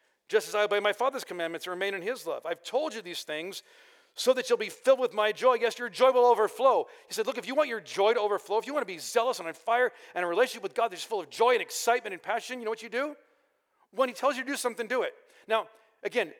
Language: English